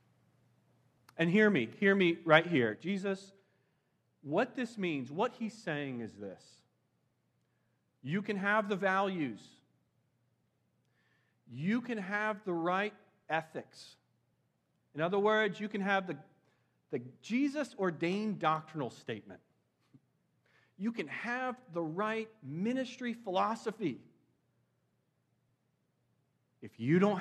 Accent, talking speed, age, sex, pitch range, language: American, 105 wpm, 40-59, male, 160-220 Hz, English